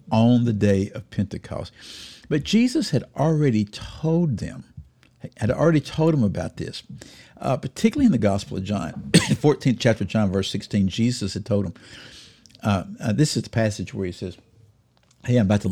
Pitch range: 105-140 Hz